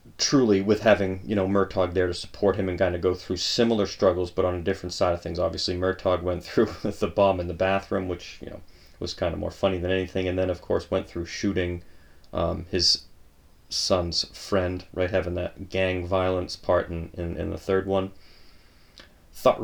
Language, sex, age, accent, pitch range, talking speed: English, male, 30-49, American, 90-100 Hz, 210 wpm